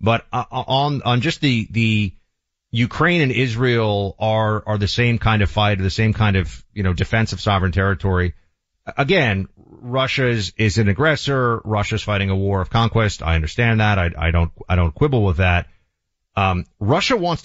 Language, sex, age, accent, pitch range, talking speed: English, male, 30-49, American, 100-135 Hz, 180 wpm